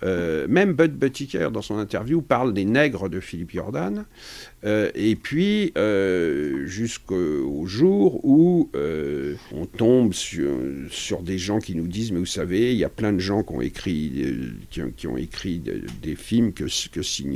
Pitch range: 90-140 Hz